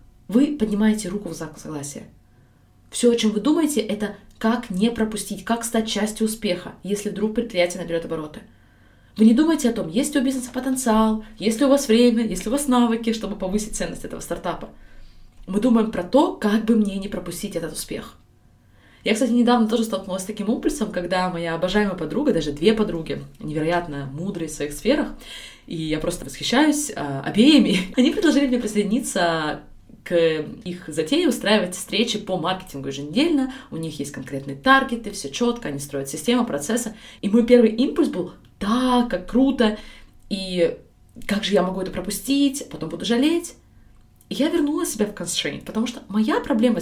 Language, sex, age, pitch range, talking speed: Russian, female, 20-39, 175-245 Hz, 175 wpm